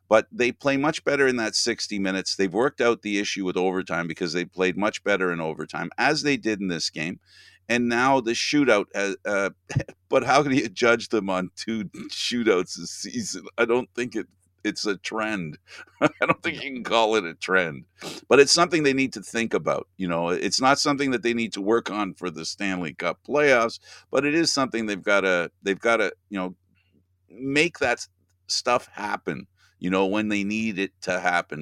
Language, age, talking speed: English, 50-69, 205 wpm